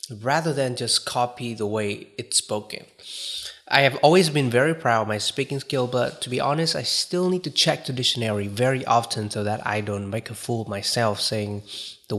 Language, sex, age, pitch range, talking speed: Vietnamese, male, 20-39, 115-140 Hz, 205 wpm